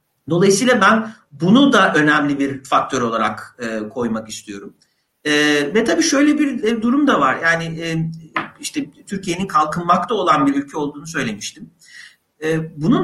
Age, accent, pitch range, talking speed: 50-69, native, 155-220 Hz, 125 wpm